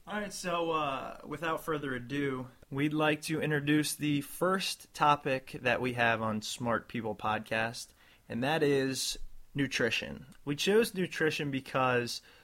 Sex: male